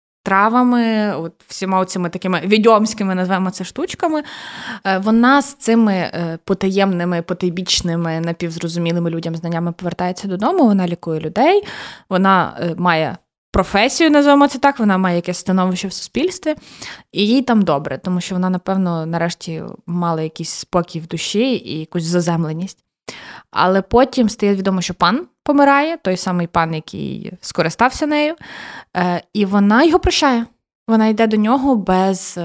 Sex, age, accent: female, 20-39, native